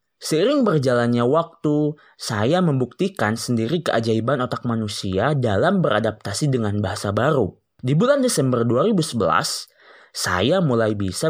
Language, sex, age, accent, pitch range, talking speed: Indonesian, male, 20-39, native, 105-135 Hz, 110 wpm